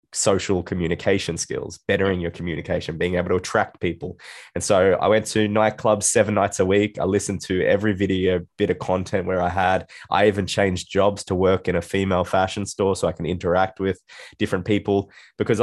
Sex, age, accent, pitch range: male, 20-39, Australian, 90-100 Hz